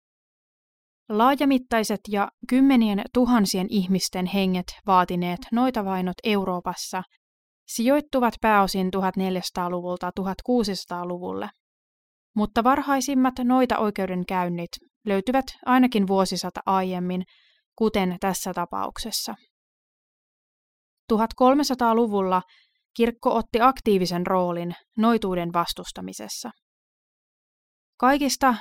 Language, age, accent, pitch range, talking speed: Finnish, 30-49, native, 185-235 Hz, 65 wpm